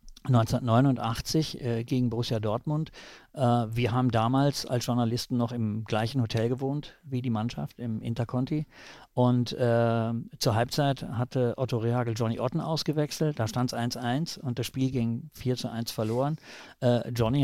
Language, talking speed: German, 150 wpm